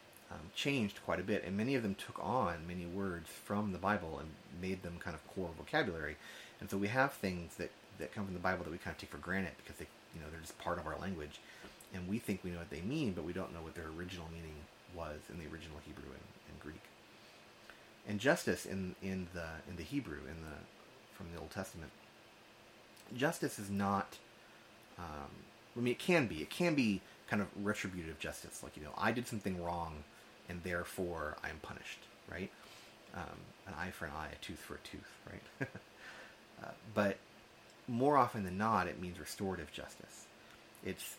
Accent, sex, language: American, male, English